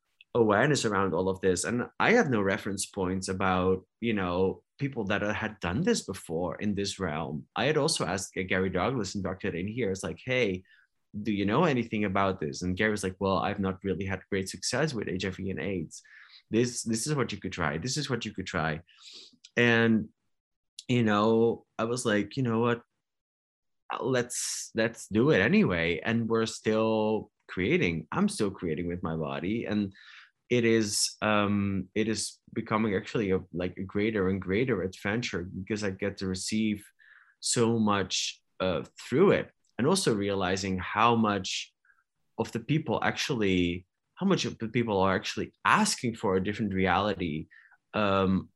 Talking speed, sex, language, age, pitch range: 175 wpm, male, English, 20-39, 95-115 Hz